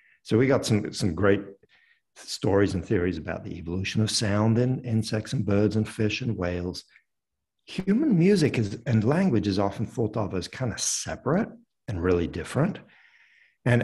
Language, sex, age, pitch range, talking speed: English, male, 60-79, 90-115 Hz, 170 wpm